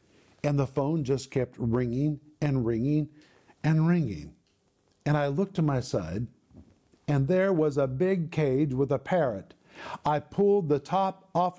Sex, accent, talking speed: male, American, 155 wpm